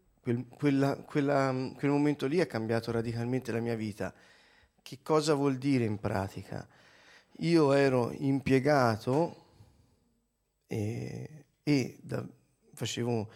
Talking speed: 100 wpm